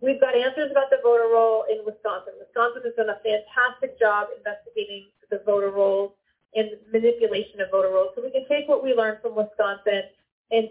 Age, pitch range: 30-49, 210-275 Hz